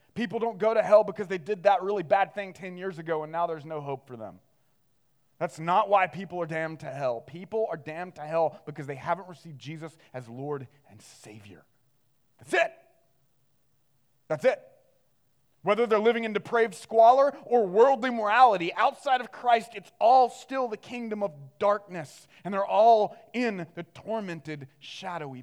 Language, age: English, 30-49